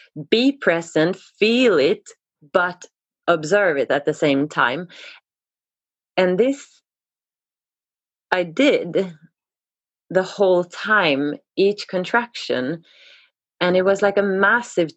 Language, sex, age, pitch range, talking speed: English, female, 30-49, 160-200 Hz, 105 wpm